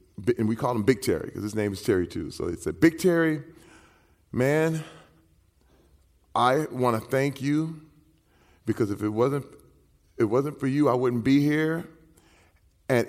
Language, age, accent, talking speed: English, 40-59, American, 165 wpm